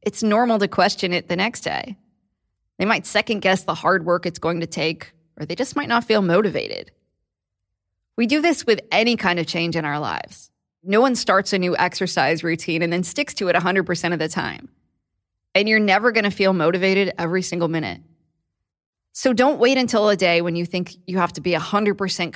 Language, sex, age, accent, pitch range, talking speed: English, female, 20-39, American, 155-195 Hz, 205 wpm